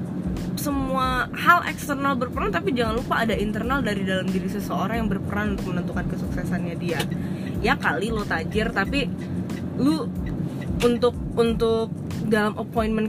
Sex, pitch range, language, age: female, 180-220 Hz, Indonesian, 20-39